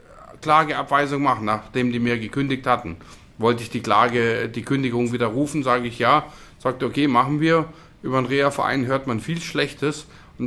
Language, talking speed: German, 165 wpm